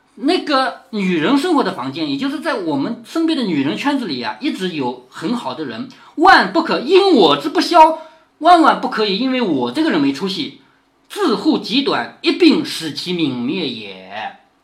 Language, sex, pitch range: Chinese, male, 190-315 Hz